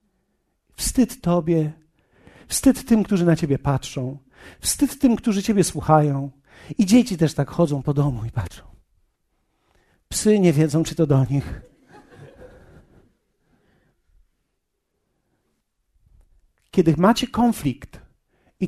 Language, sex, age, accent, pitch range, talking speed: Polish, male, 50-69, native, 155-215 Hz, 105 wpm